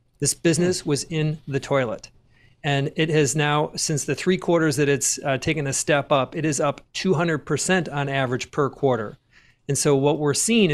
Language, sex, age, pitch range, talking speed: English, male, 40-59, 135-165 Hz, 190 wpm